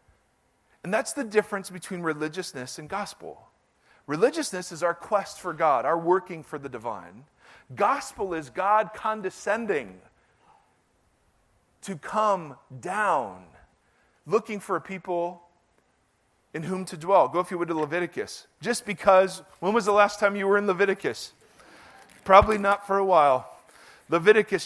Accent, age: American, 40-59